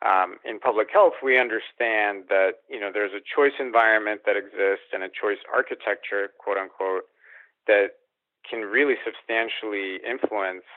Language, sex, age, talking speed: English, male, 40-59, 145 wpm